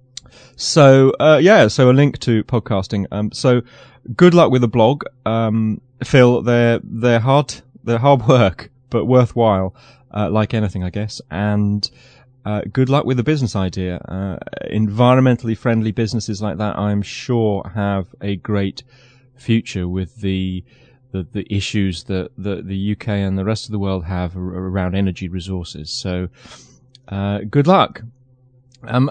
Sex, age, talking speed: male, 30-49, 155 wpm